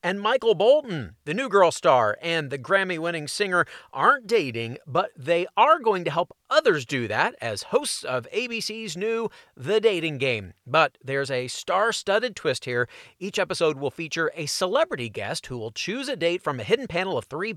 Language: English